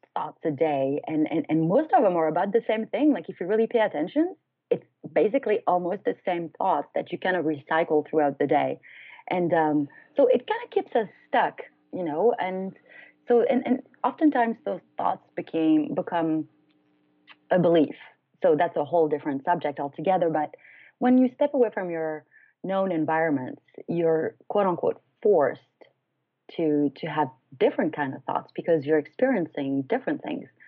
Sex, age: female, 30-49